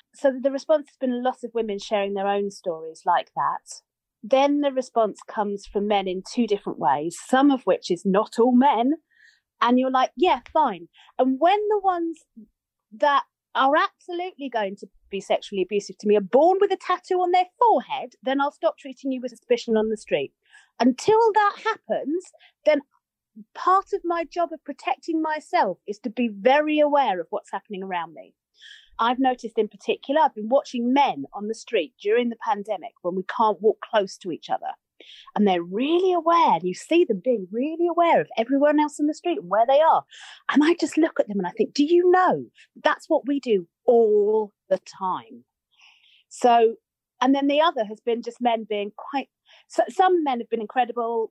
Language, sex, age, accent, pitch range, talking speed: English, female, 40-59, British, 215-325 Hz, 200 wpm